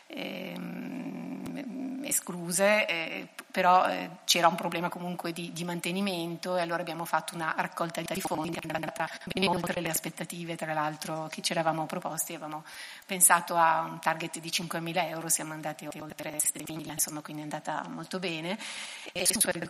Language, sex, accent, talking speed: Italian, female, native, 155 wpm